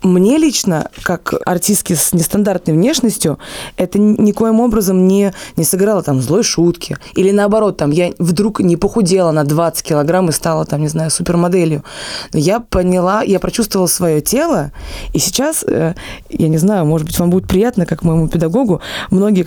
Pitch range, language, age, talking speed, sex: 160-195 Hz, Russian, 20-39, 160 wpm, female